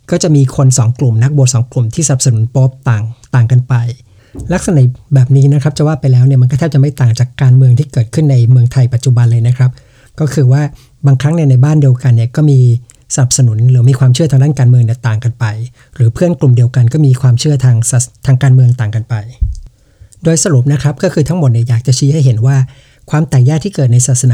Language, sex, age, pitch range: English, male, 60-79, 120-145 Hz